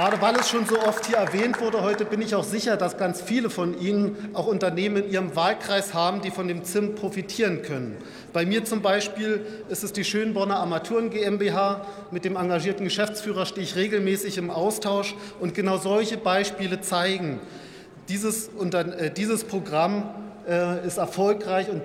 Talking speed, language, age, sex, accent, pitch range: 165 wpm, German, 40-59, male, German, 175-205 Hz